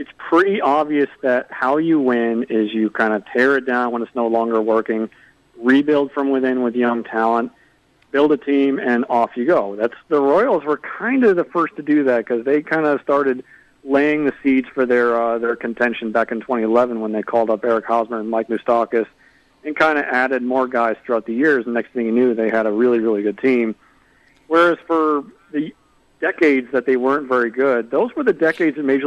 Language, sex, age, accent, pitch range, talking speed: English, male, 40-59, American, 115-140 Hz, 215 wpm